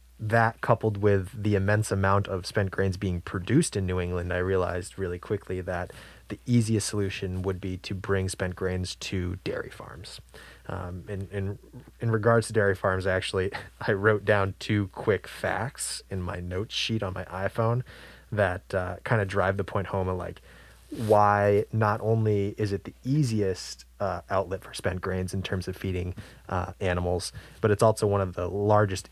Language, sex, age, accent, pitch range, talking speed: English, male, 20-39, American, 90-105 Hz, 180 wpm